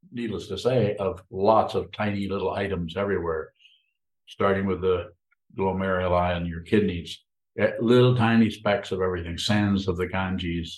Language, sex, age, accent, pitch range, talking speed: English, male, 60-79, American, 90-105 Hz, 150 wpm